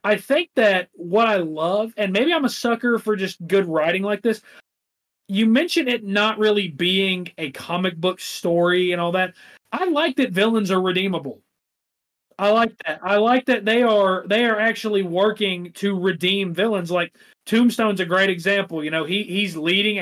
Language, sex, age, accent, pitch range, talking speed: English, male, 30-49, American, 175-215 Hz, 185 wpm